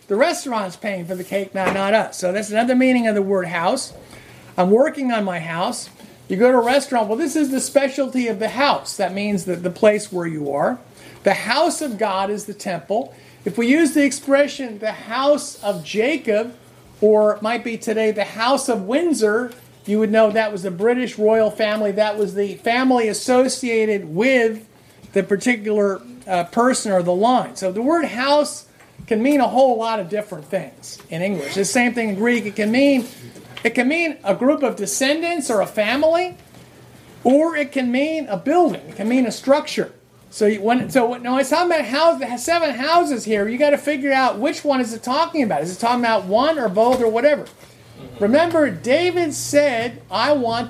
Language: English